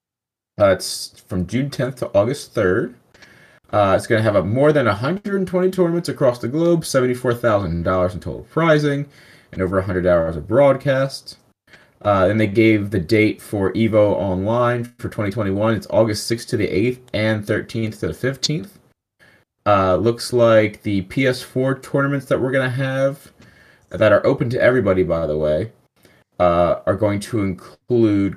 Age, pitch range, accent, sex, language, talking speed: 30-49, 95-130 Hz, American, male, English, 185 wpm